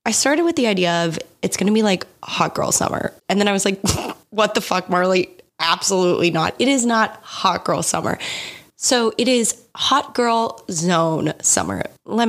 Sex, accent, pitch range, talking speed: female, American, 170-225 Hz, 190 wpm